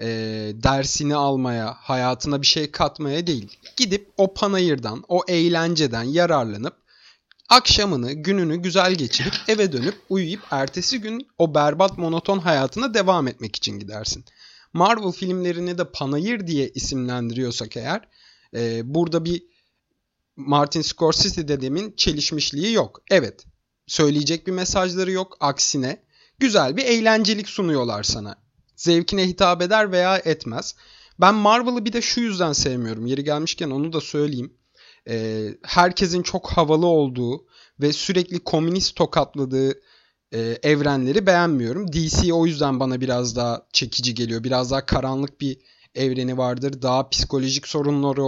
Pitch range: 130-180 Hz